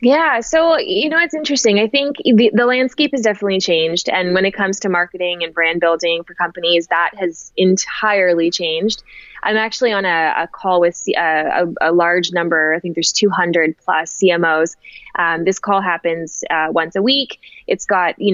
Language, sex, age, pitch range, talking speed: English, female, 20-39, 170-215 Hz, 190 wpm